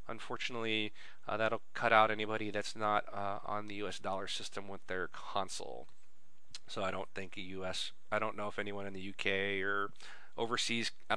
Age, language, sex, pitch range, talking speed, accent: 40-59, English, male, 110-140 Hz, 185 wpm, American